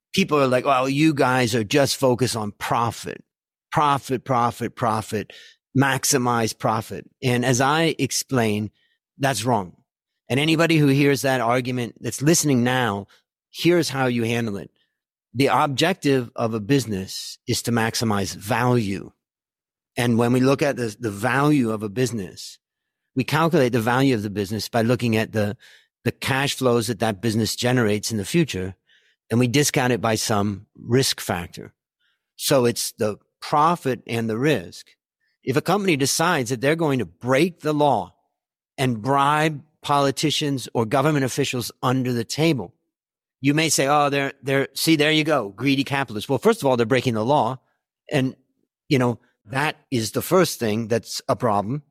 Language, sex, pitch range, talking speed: English, male, 115-145 Hz, 165 wpm